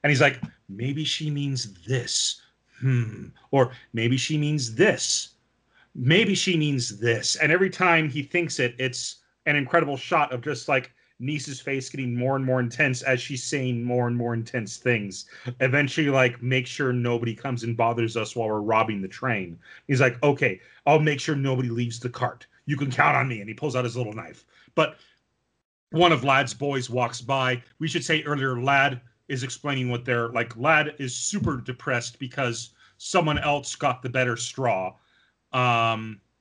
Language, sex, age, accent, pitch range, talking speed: English, male, 40-59, American, 120-145 Hz, 180 wpm